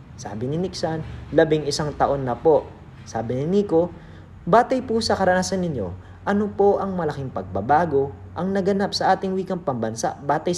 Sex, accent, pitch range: male, native, 120-170 Hz